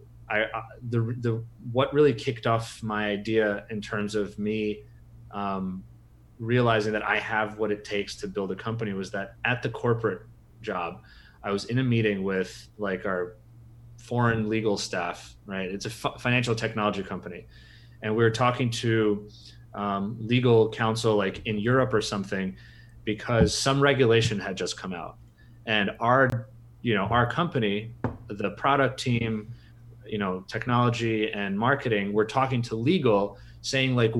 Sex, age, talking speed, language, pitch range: male, 30-49, 155 wpm, English, 105-120 Hz